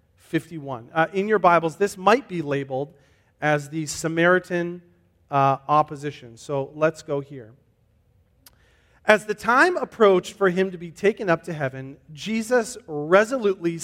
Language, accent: English, American